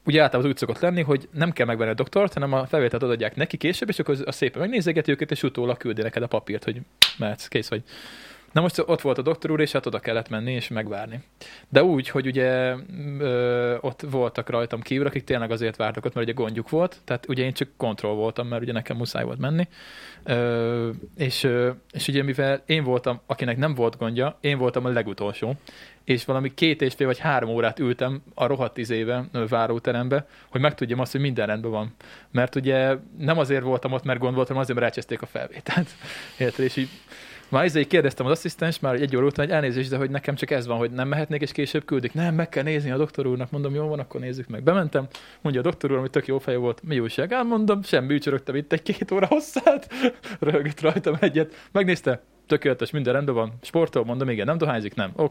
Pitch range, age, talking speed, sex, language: 120-150 Hz, 20-39, 215 wpm, male, Hungarian